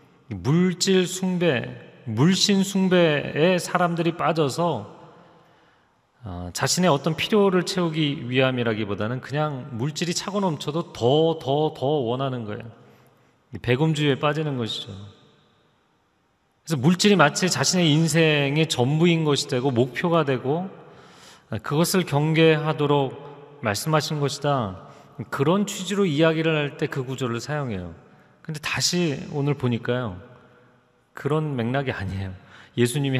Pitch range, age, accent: 120-160 Hz, 30-49, native